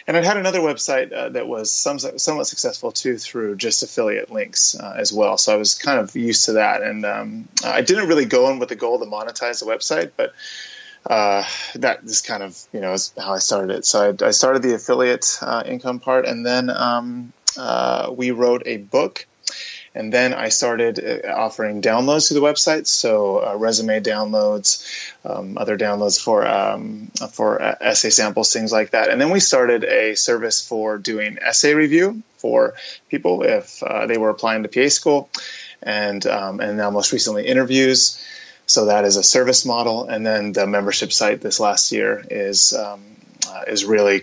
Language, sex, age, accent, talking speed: English, male, 20-39, American, 195 wpm